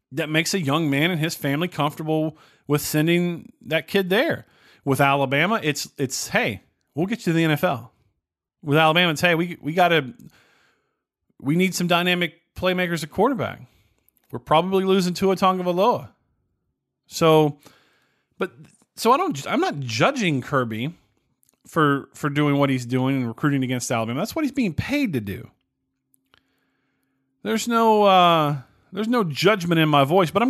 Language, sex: English, male